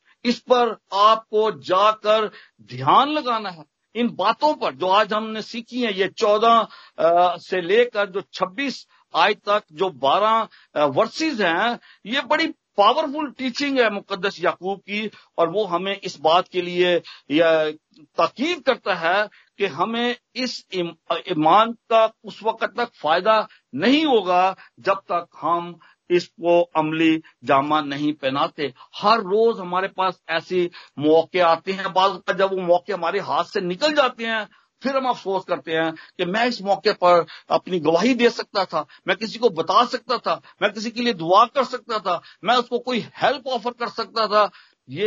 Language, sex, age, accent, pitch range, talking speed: Hindi, male, 50-69, native, 170-235 Hz, 160 wpm